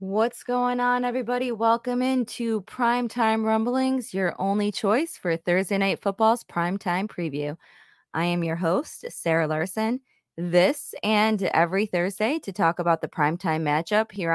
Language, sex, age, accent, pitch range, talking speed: English, female, 20-39, American, 170-220 Hz, 140 wpm